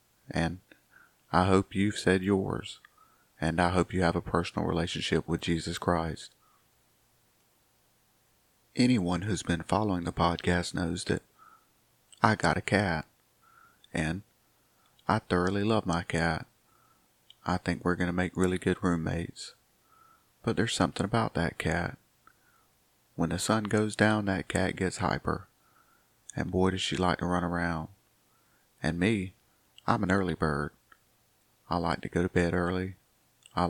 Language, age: English, 30-49